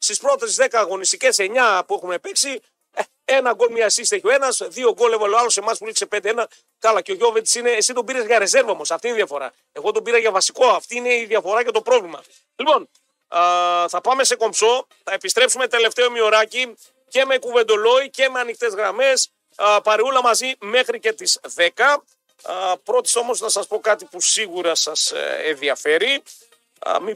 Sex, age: male, 40-59